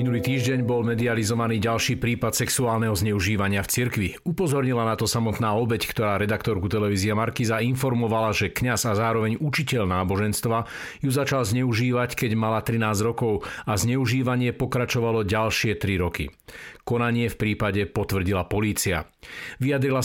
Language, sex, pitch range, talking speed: Slovak, male, 105-130 Hz, 135 wpm